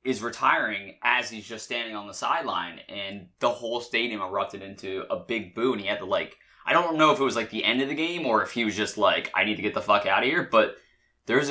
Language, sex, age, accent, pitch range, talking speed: English, male, 20-39, American, 100-120 Hz, 270 wpm